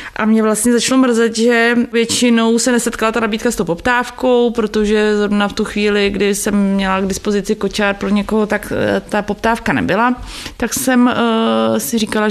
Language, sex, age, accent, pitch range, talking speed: Czech, female, 20-39, native, 205-235 Hz, 175 wpm